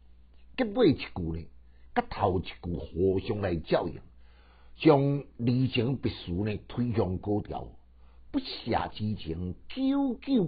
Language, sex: Chinese, male